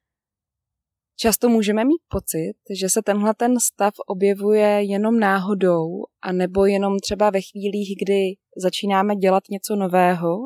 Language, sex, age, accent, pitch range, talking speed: Czech, female, 20-39, native, 180-215 Hz, 130 wpm